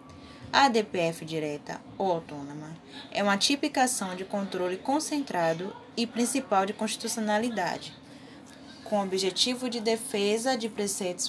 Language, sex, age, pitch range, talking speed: Portuguese, female, 10-29, 185-255 Hz, 115 wpm